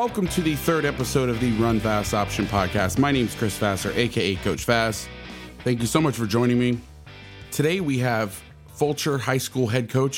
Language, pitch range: English, 110-130 Hz